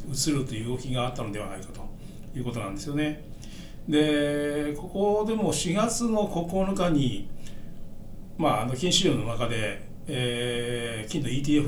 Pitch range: 120-165 Hz